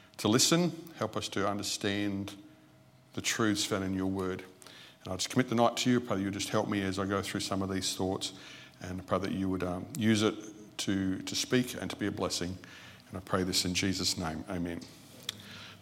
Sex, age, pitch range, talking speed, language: male, 50-69, 95-110 Hz, 220 wpm, English